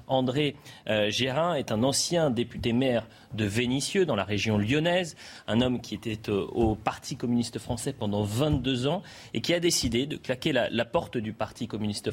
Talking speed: 190 wpm